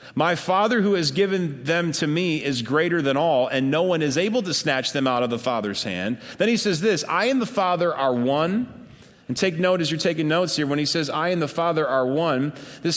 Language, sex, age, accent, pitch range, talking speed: English, male, 30-49, American, 110-155 Hz, 245 wpm